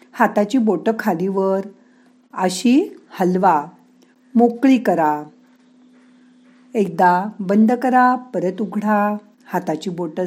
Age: 50-69